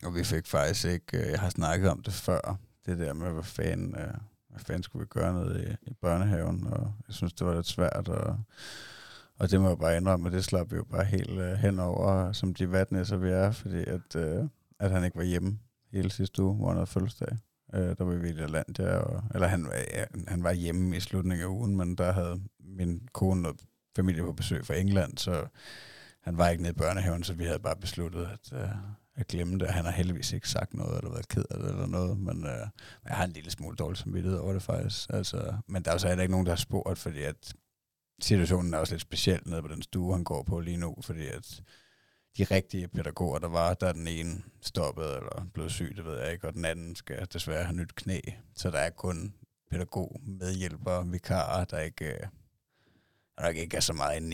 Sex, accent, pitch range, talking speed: male, native, 85-105 Hz, 225 wpm